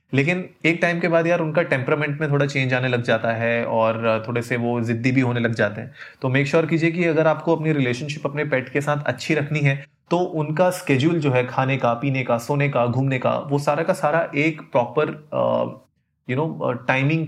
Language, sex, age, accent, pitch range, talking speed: Hindi, male, 30-49, native, 125-150 Hz, 220 wpm